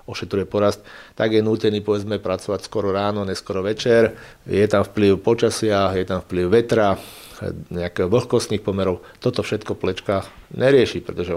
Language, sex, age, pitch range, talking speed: Slovak, male, 40-59, 90-110 Hz, 135 wpm